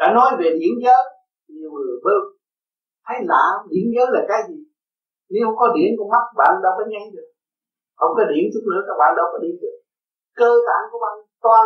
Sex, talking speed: male, 215 wpm